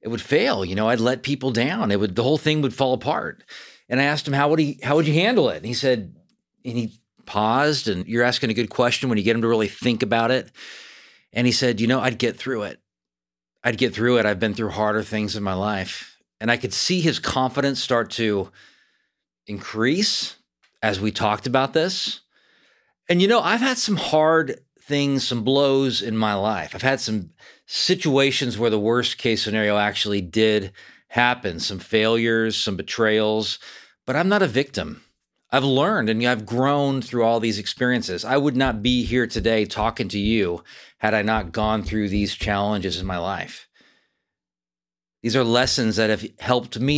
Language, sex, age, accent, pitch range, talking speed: English, male, 40-59, American, 105-135 Hz, 195 wpm